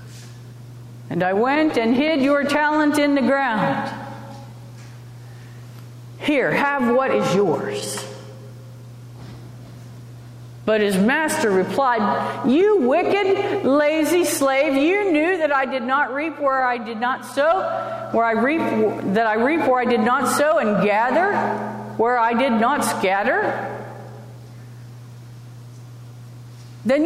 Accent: American